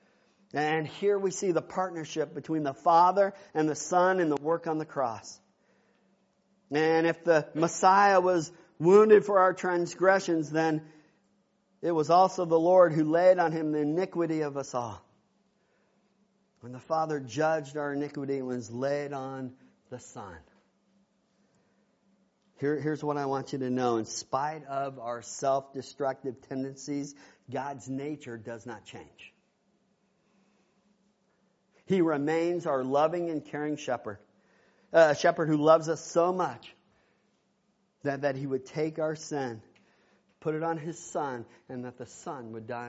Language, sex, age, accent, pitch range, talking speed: English, male, 50-69, American, 135-185 Hz, 145 wpm